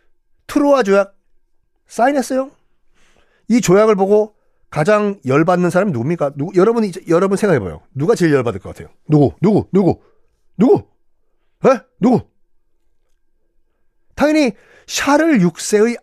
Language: Korean